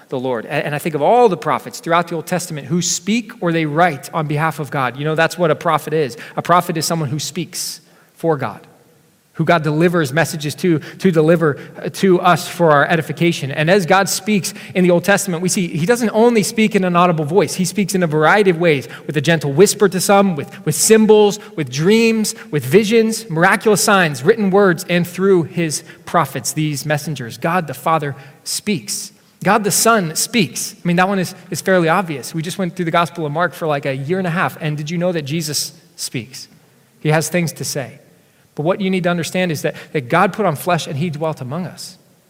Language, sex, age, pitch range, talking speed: English, male, 20-39, 155-190 Hz, 225 wpm